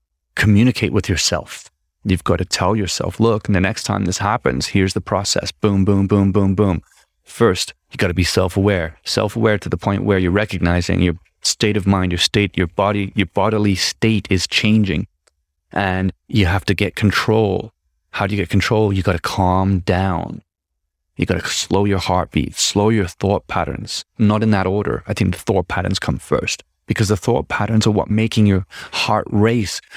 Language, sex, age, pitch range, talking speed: English, male, 30-49, 90-105 Hz, 190 wpm